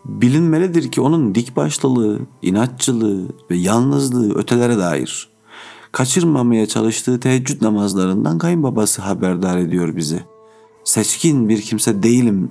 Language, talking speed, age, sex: Turkish, 100 wpm, 50-69, male